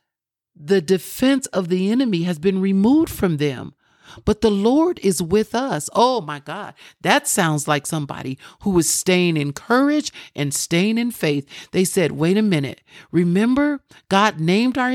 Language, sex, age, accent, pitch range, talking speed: English, male, 50-69, American, 165-235 Hz, 165 wpm